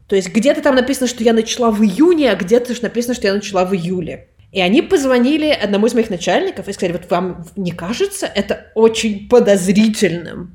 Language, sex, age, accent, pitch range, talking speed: Russian, female, 20-39, native, 180-245 Hz, 200 wpm